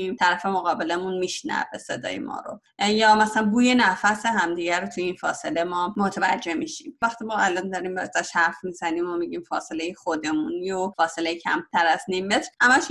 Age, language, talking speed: 30-49, Persian, 170 wpm